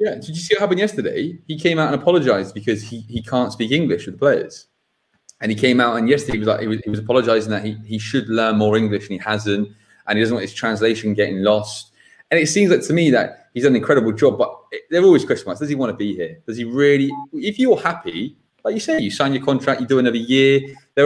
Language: English